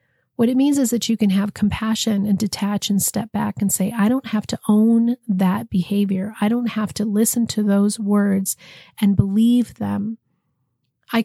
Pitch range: 195-235 Hz